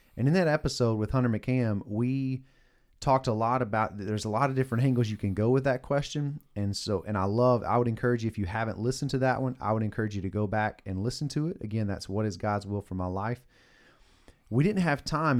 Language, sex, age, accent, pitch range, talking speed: English, male, 30-49, American, 105-130 Hz, 250 wpm